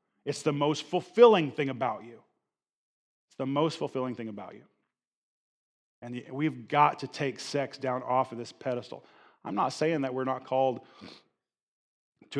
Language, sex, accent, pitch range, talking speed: English, male, American, 125-145 Hz, 160 wpm